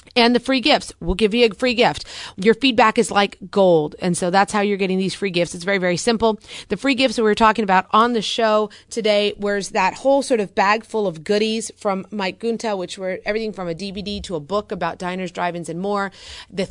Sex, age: female, 30-49